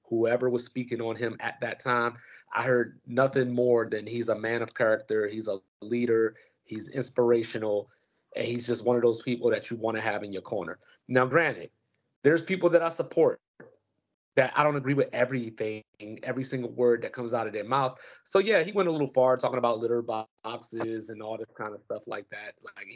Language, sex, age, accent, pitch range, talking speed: English, male, 30-49, American, 115-135 Hz, 210 wpm